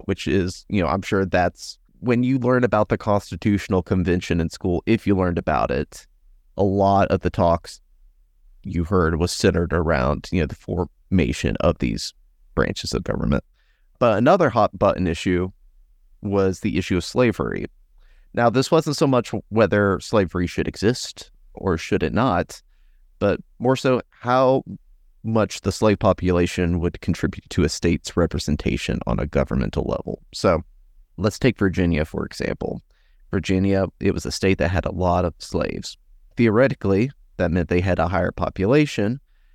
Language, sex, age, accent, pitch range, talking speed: English, male, 30-49, American, 85-105 Hz, 160 wpm